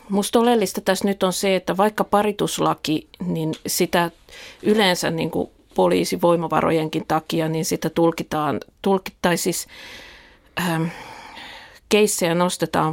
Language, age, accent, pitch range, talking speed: Finnish, 50-69, native, 155-180 Hz, 110 wpm